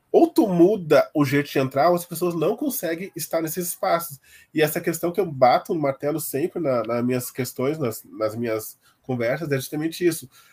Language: Portuguese